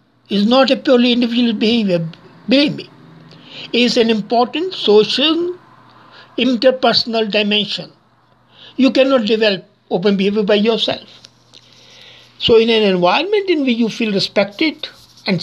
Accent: Indian